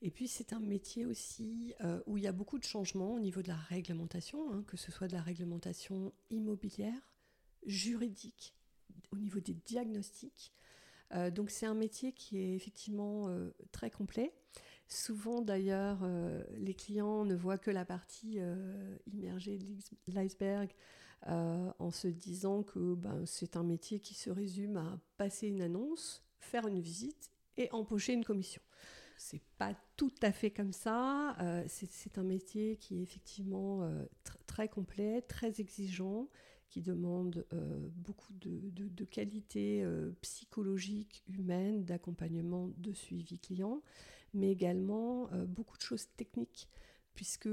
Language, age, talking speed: French, 50-69, 155 wpm